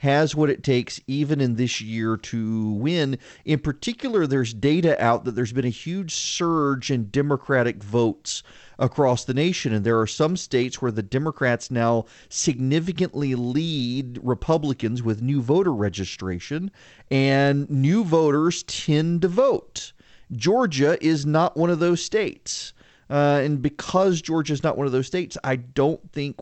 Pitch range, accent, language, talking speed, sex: 120-165 Hz, American, English, 155 wpm, male